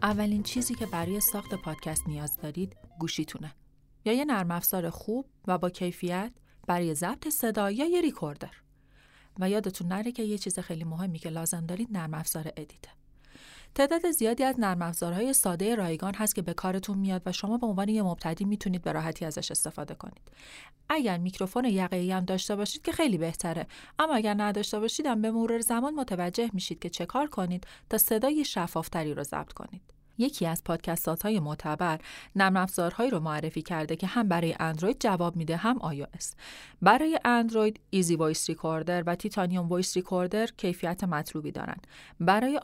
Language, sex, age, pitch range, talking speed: Persian, female, 30-49, 170-215 Hz, 165 wpm